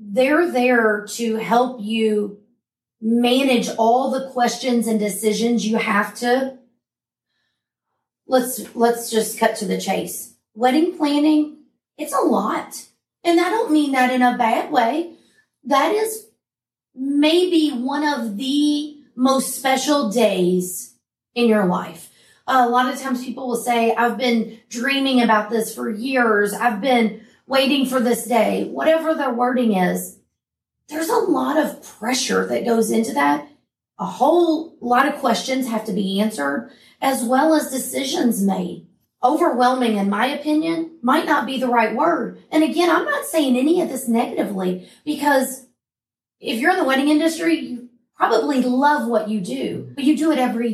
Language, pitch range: English, 225-290 Hz